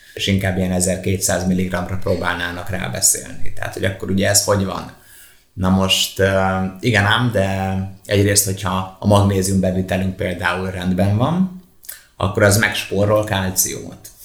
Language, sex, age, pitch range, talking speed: Hungarian, male, 30-49, 90-100 Hz, 130 wpm